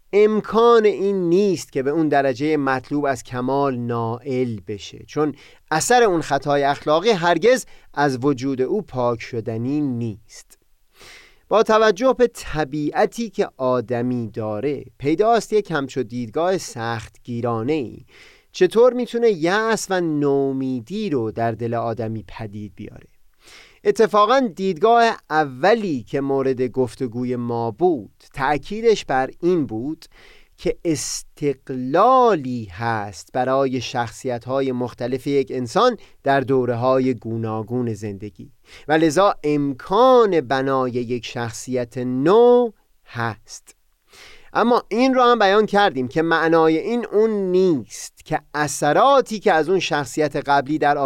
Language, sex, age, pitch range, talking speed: Persian, male, 30-49, 125-190 Hz, 115 wpm